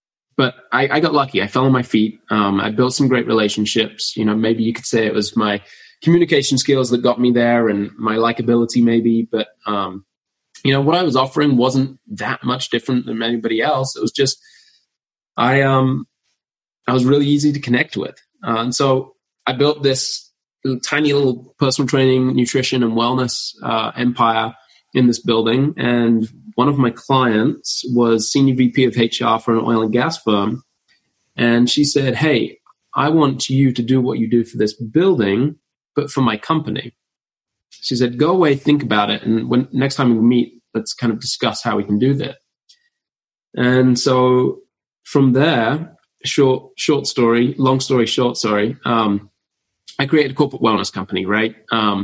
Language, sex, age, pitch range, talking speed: English, male, 20-39, 115-135 Hz, 180 wpm